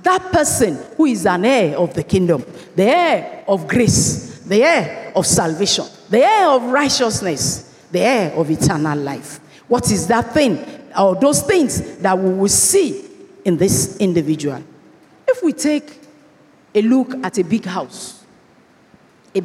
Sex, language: female, English